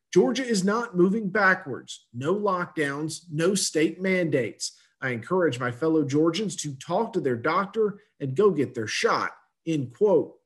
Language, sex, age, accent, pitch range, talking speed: English, male, 40-59, American, 155-200 Hz, 155 wpm